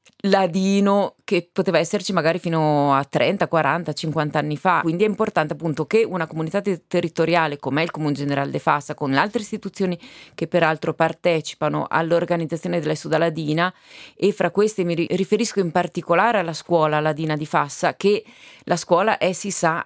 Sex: female